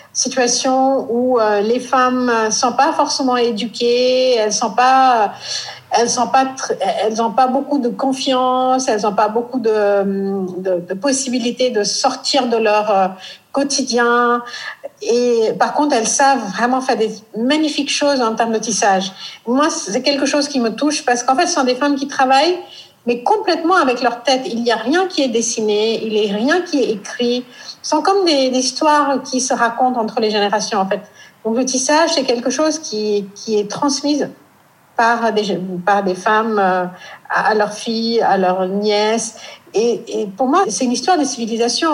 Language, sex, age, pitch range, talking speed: French, female, 50-69, 220-275 Hz, 175 wpm